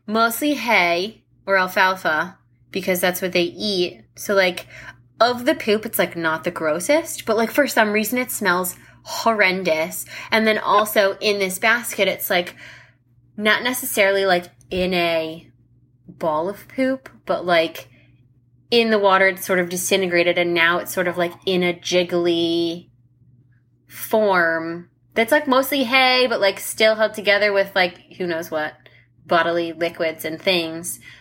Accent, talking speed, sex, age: American, 155 wpm, female, 20-39